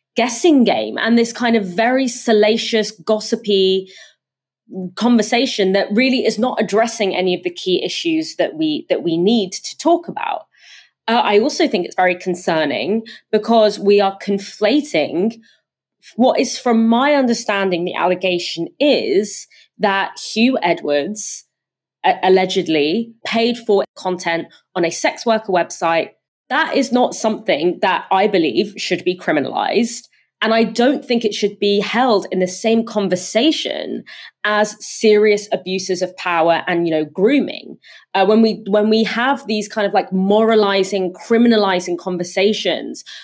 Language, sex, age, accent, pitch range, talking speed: English, female, 20-39, British, 185-240 Hz, 140 wpm